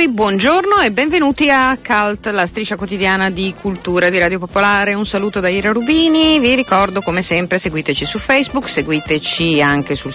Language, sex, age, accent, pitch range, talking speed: Italian, female, 50-69, native, 155-220 Hz, 165 wpm